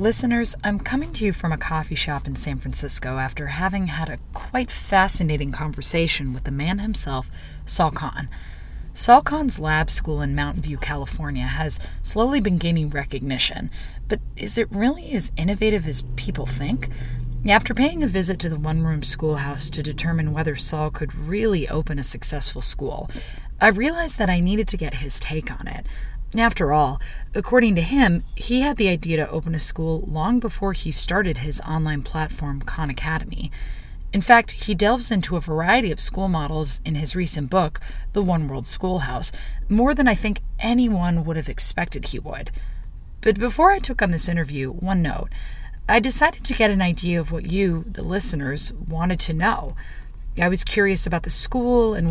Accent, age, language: American, 30-49, English